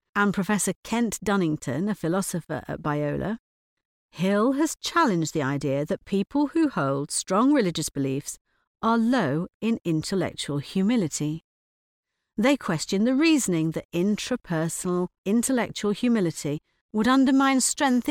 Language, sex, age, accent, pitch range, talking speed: English, female, 50-69, British, 150-225 Hz, 120 wpm